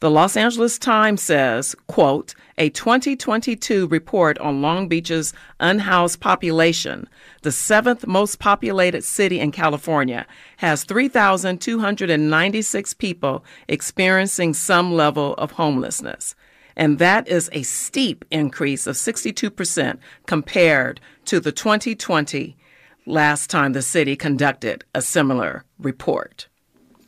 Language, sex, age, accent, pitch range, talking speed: English, female, 40-59, American, 150-200 Hz, 110 wpm